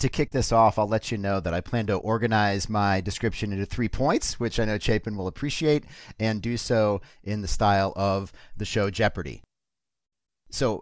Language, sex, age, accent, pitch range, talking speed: English, male, 40-59, American, 95-125 Hz, 195 wpm